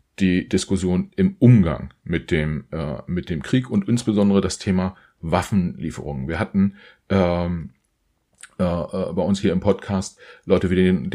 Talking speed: 155 wpm